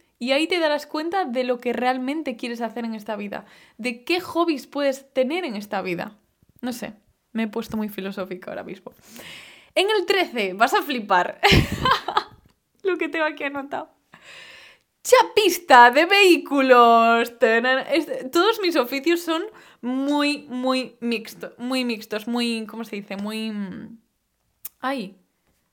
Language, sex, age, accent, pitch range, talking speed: Spanish, female, 10-29, Spanish, 235-335 Hz, 140 wpm